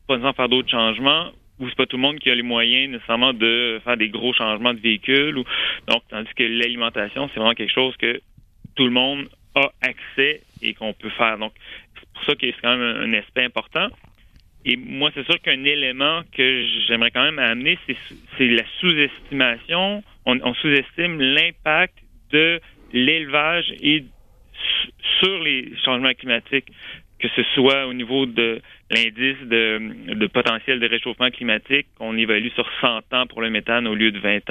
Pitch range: 115-140 Hz